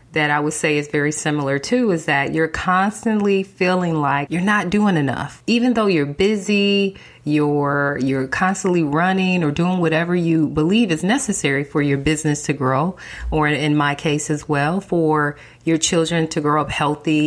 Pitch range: 150-190 Hz